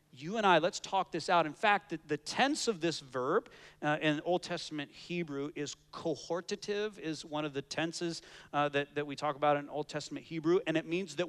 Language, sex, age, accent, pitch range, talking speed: English, male, 40-59, American, 140-180 Hz, 220 wpm